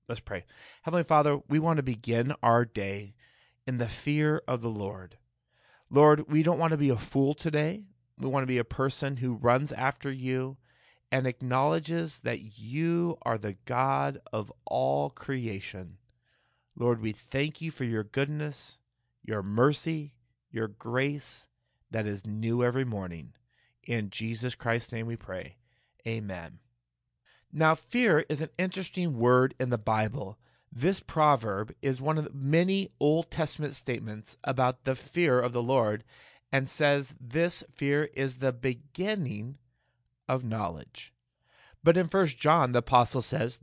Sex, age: male, 40-59